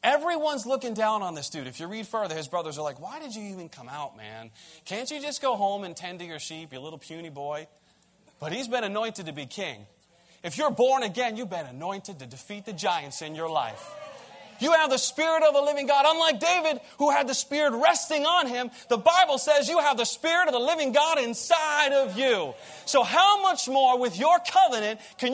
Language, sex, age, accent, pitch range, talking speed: English, male, 30-49, American, 175-275 Hz, 225 wpm